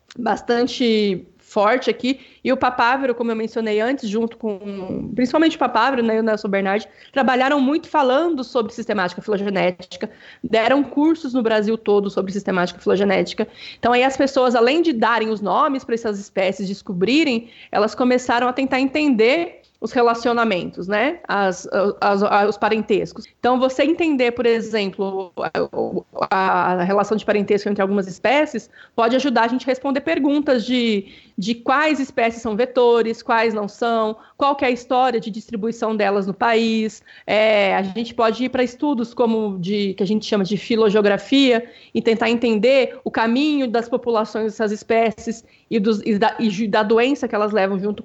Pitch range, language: 210-250 Hz, Portuguese